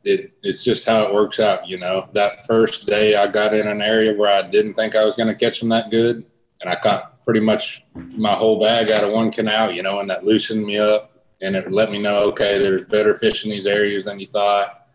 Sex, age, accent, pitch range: male, 30-49, American, 100-110 Hz